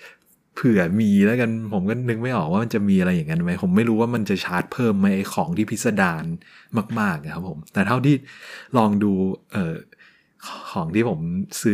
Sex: male